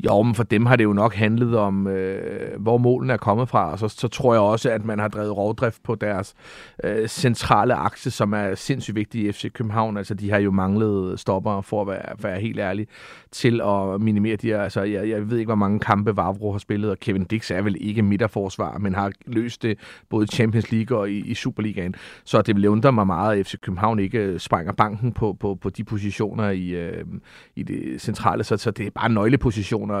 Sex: male